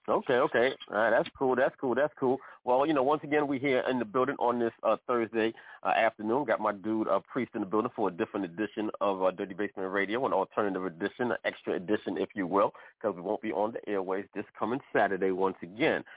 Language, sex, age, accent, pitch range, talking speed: English, male, 40-59, American, 95-115 Hz, 230 wpm